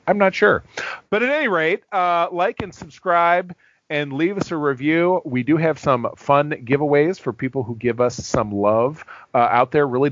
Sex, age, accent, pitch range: male, 40-59, American, 115-160 Hz